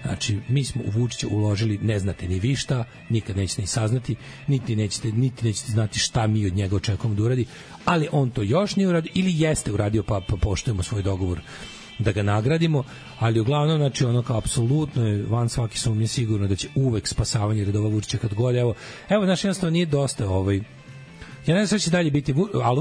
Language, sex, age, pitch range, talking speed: English, male, 40-59, 110-155 Hz, 205 wpm